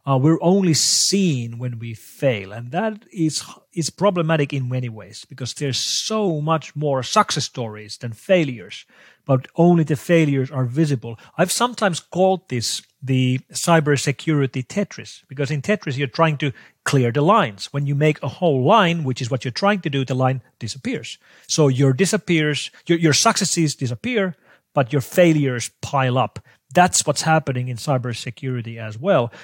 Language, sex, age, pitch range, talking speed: English, male, 40-59, 130-170 Hz, 165 wpm